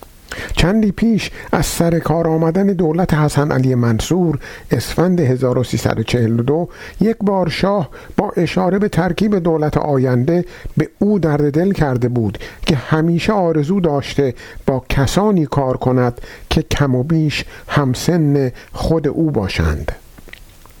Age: 50-69